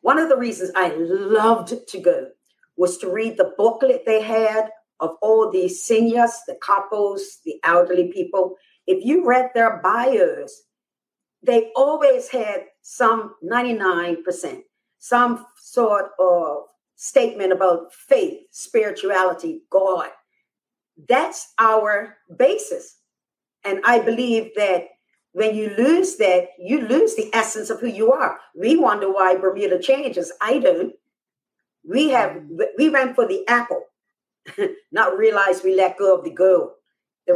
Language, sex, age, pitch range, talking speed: English, female, 50-69, 190-275 Hz, 135 wpm